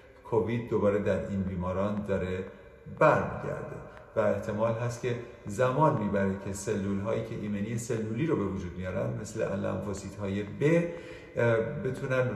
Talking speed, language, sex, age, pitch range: 135 wpm, Persian, male, 50-69, 105-135 Hz